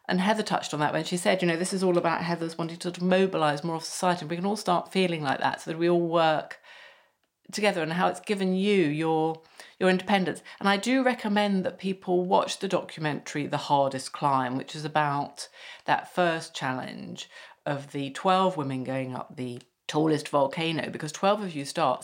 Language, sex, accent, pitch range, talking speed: English, female, British, 150-185 Hz, 200 wpm